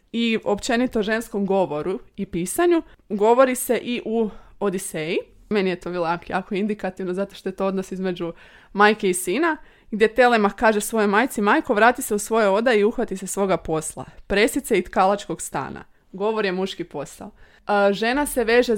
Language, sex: Croatian, female